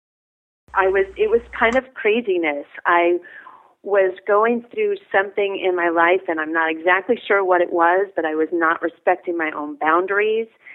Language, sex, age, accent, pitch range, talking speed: English, female, 40-59, American, 165-205 Hz, 175 wpm